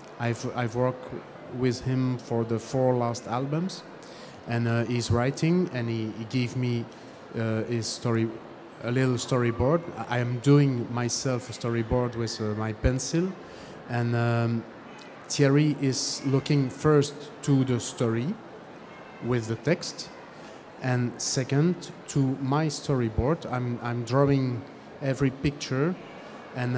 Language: German